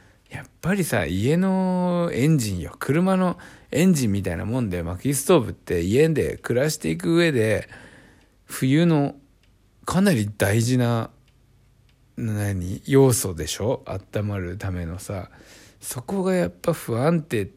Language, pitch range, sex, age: Japanese, 100-140 Hz, male, 60-79